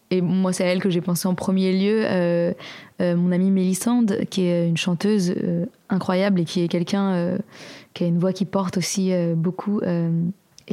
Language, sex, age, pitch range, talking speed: French, female, 20-39, 180-205 Hz, 205 wpm